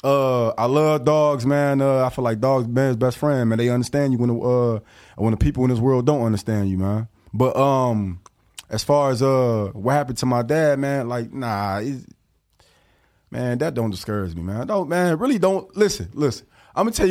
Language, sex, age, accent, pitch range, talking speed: English, male, 20-39, American, 115-155 Hz, 210 wpm